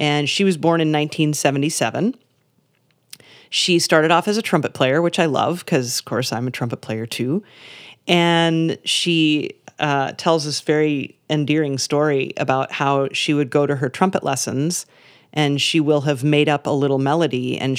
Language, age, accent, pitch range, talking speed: English, 40-59, American, 135-165 Hz, 170 wpm